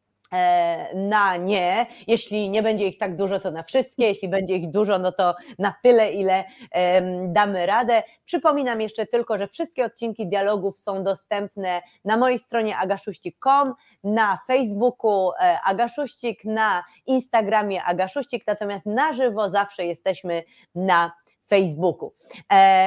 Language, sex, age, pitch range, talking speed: Polish, female, 20-39, 195-245 Hz, 125 wpm